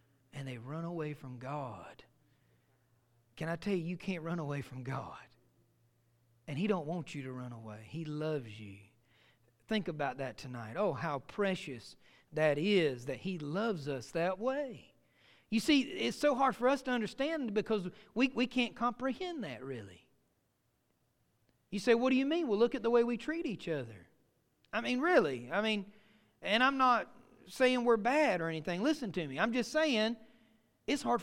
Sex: male